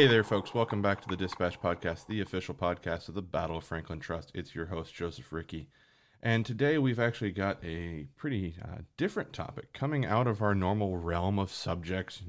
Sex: male